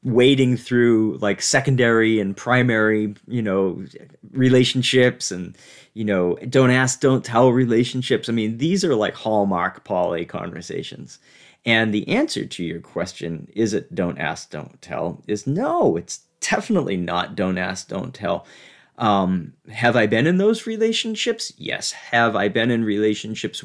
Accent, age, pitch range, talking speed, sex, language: American, 40-59, 105-155 Hz, 150 wpm, male, English